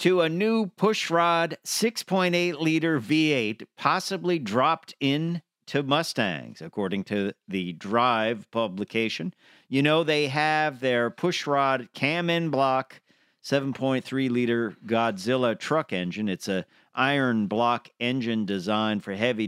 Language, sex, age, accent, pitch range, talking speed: English, male, 50-69, American, 110-155 Hz, 120 wpm